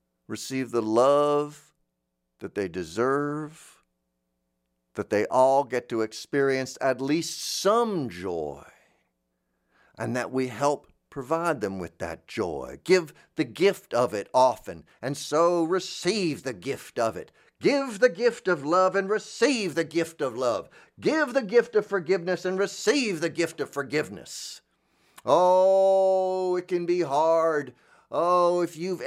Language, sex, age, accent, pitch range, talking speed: English, male, 50-69, American, 130-190 Hz, 140 wpm